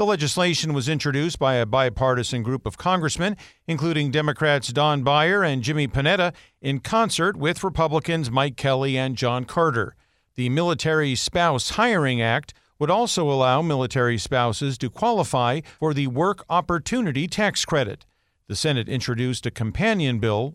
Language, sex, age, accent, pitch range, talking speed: English, male, 50-69, American, 125-170 Hz, 145 wpm